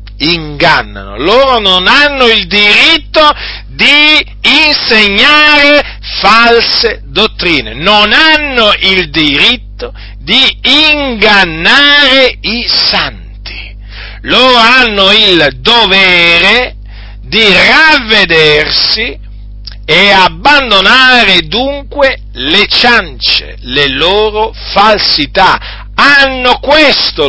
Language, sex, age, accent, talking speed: Italian, male, 50-69, native, 75 wpm